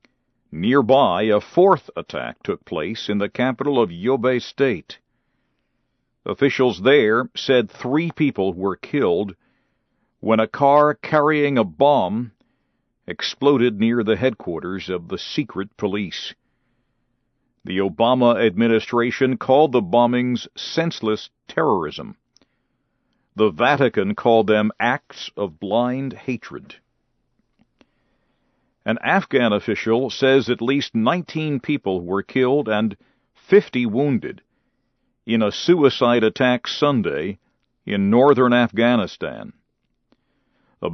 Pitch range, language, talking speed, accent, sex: 105-135 Hz, English, 105 wpm, American, male